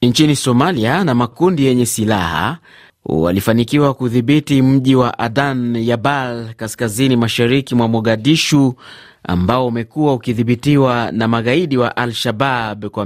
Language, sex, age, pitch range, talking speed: Swahili, male, 30-49, 110-140 Hz, 115 wpm